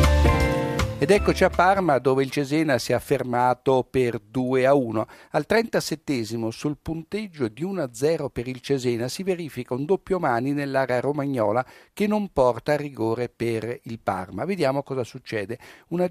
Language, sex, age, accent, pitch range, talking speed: Italian, male, 60-79, native, 120-160 Hz, 165 wpm